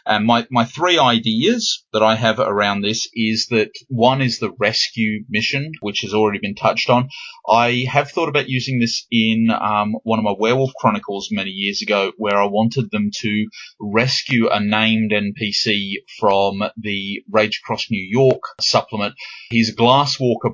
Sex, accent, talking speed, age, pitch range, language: male, Australian, 170 wpm, 30-49, 105-130 Hz, English